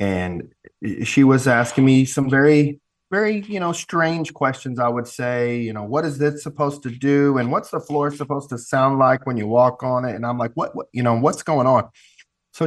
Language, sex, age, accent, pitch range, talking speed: English, male, 30-49, American, 115-140 Hz, 225 wpm